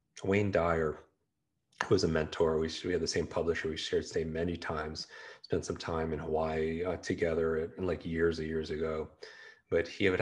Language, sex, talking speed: English, male, 195 wpm